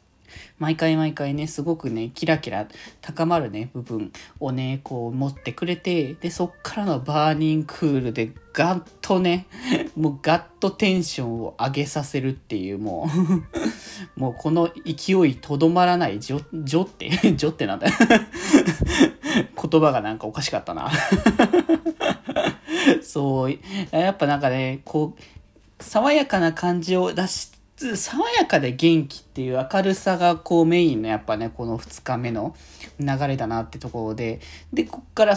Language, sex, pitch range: Japanese, male, 140-185 Hz